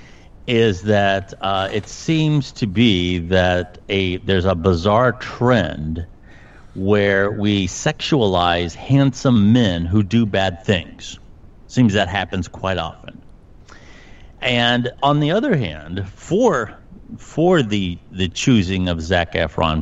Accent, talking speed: American, 120 wpm